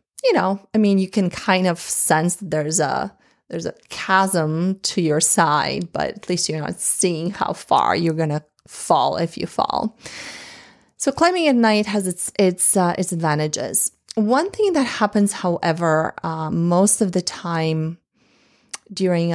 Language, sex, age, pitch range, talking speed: English, female, 30-49, 160-190 Hz, 165 wpm